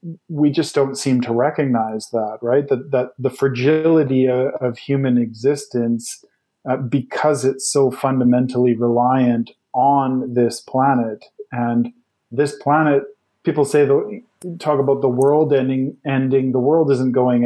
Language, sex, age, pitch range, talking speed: English, male, 40-59, 120-140 Hz, 140 wpm